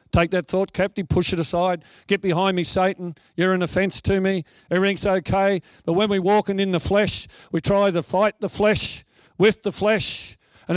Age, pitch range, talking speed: 40-59, 140-190 Hz, 195 wpm